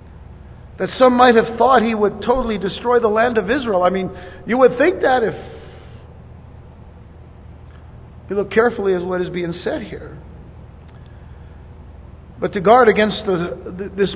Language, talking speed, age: English, 150 wpm, 50-69